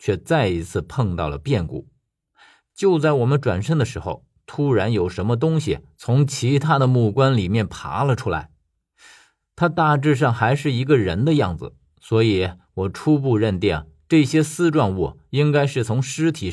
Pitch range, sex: 100-145 Hz, male